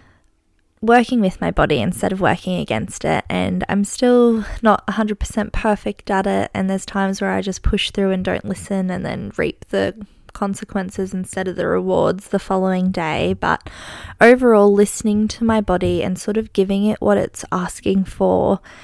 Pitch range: 180-210 Hz